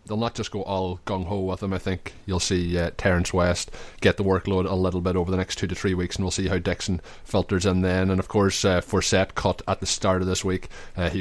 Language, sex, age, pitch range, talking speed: English, male, 20-39, 95-110 Hz, 270 wpm